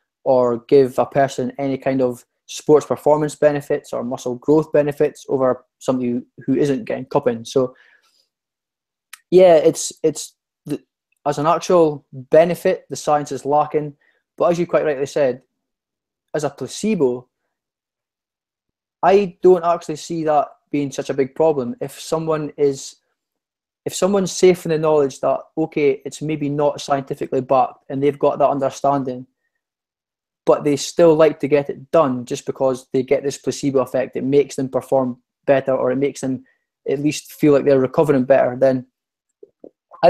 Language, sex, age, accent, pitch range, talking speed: English, male, 20-39, British, 130-150 Hz, 155 wpm